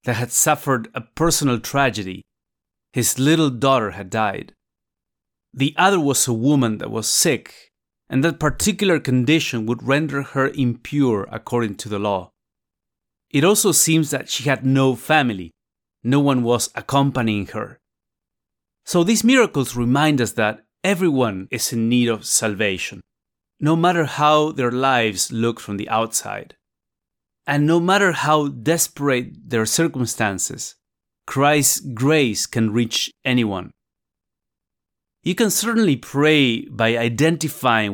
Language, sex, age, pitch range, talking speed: English, male, 30-49, 115-155 Hz, 130 wpm